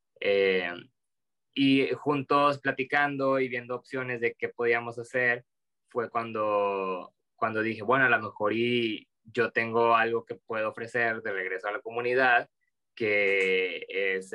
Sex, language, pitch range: male, Spanish, 110-140 Hz